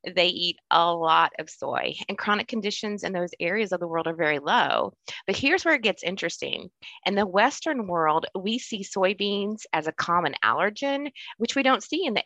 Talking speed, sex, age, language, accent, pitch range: 200 wpm, female, 30-49, English, American, 170-235 Hz